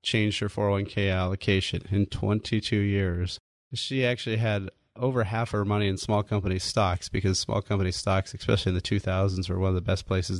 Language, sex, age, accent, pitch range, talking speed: English, male, 30-49, American, 95-115 Hz, 185 wpm